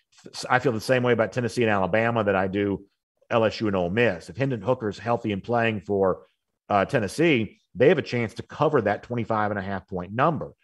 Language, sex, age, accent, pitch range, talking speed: English, male, 50-69, American, 100-115 Hz, 195 wpm